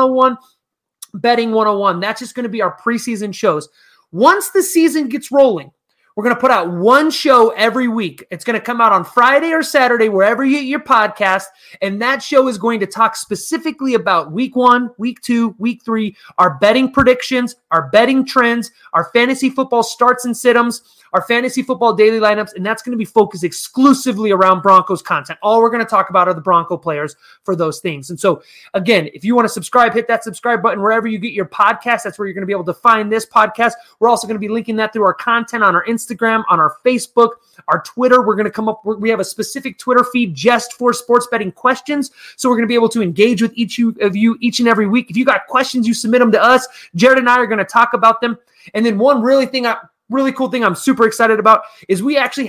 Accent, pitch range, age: American, 210-245 Hz, 30-49